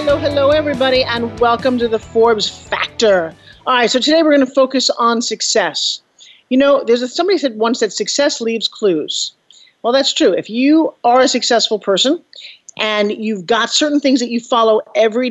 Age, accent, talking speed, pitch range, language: 40-59, American, 185 wpm, 220-280 Hz, English